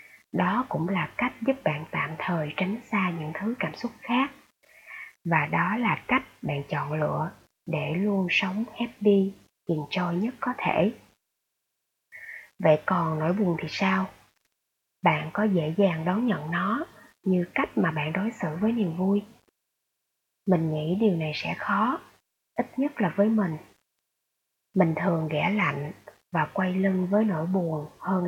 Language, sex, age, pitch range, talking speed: Vietnamese, female, 20-39, 160-210 Hz, 160 wpm